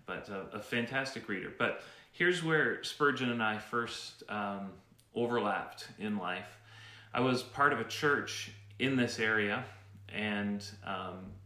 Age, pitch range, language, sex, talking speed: 30-49, 100-120 Hz, English, male, 140 wpm